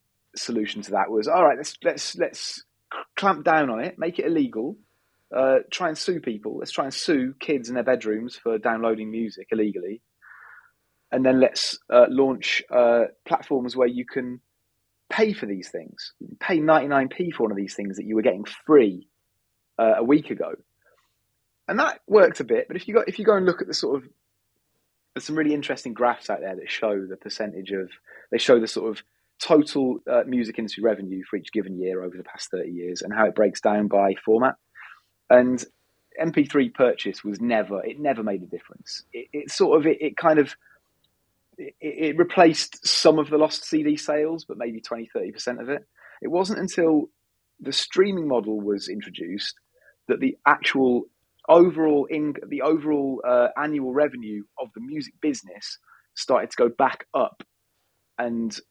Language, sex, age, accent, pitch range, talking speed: English, male, 30-49, British, 110-155 Hz, 185 wpm